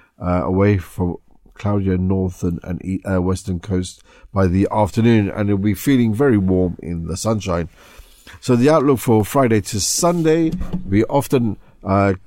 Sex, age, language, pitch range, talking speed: male, 50-69, English, 90-105 Hz, 170 wpm